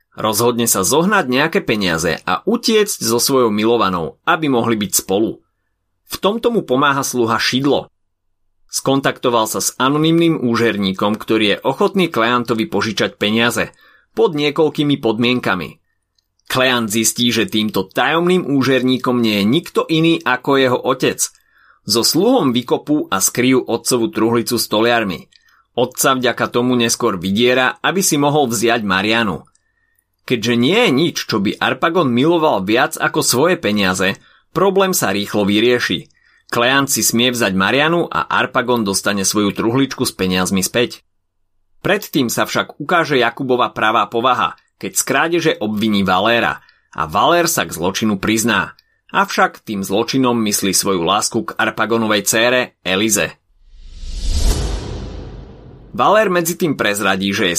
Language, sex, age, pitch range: Slovak, male, 30-49, 100-135 Hz